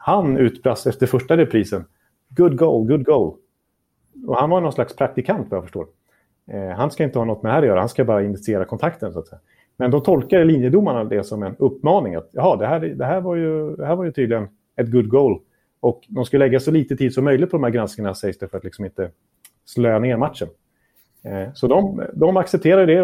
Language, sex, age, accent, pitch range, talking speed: Swedish, male, 30-49, Norwegian, 115-165 Hz, 210 wpm